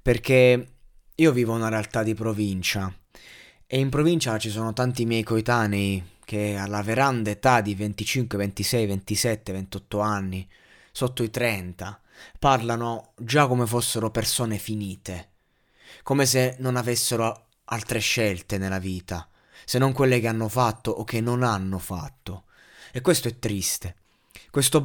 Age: 20-39